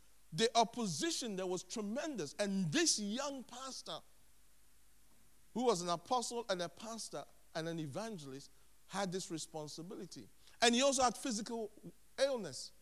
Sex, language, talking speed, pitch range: male, English, 130 wpm, 170-230 Hz